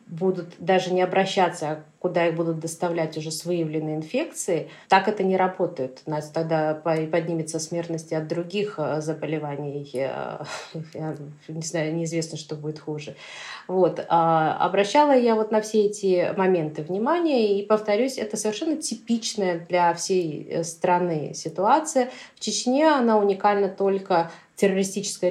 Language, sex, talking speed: Russian, female, 135 wpm